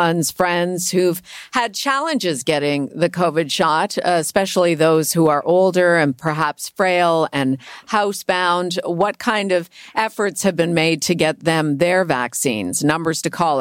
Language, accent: English, American